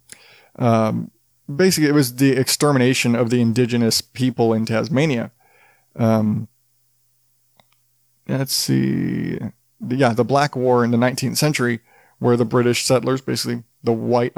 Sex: male